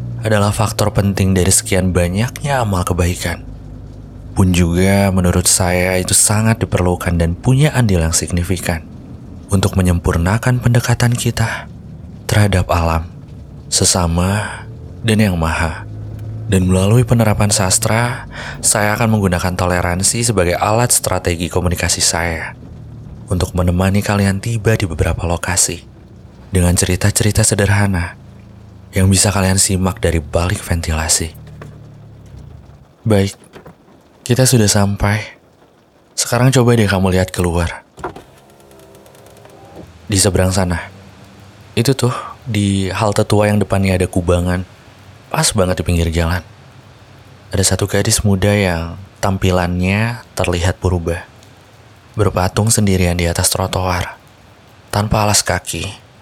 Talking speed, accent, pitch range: 110 wpm, native, 90-110 Hz